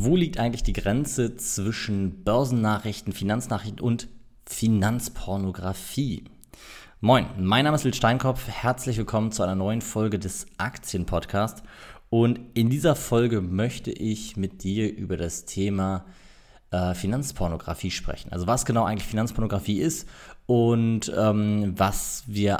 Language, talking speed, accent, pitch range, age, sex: German, 125 wpm, German, 95-120 Hz, 20-39, male